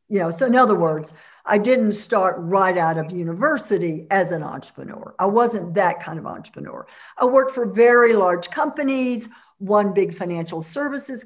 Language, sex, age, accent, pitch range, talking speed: English, female, 60-79, American, 190-245 Hz, 170 wpm